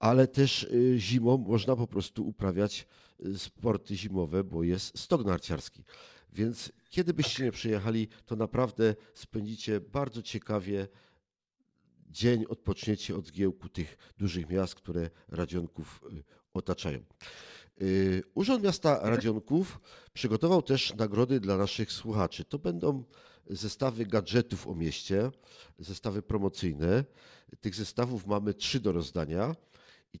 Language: Polish